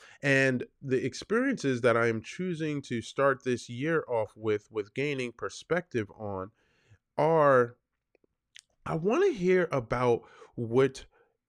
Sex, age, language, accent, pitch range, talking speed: male, 20-39, English, American, 115-150 Hz, 125 wpm